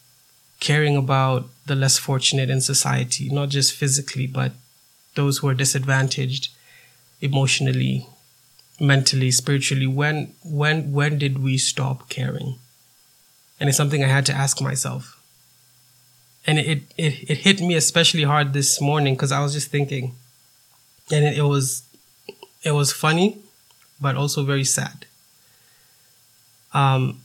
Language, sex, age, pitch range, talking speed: English, male, 20-39, 130-145 Hz, 130 wpm